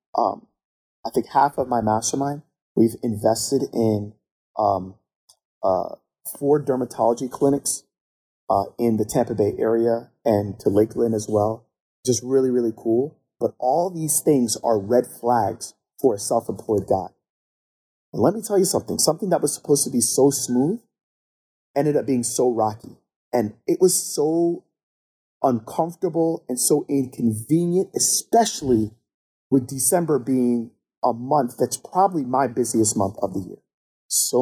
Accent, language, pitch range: American, English, 115-150 Hz